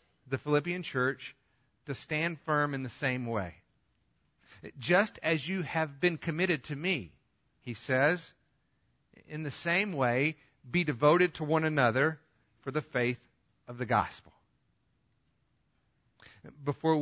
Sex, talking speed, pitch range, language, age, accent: male, 125 wpm, 115-150 Hz, English, 50-69, American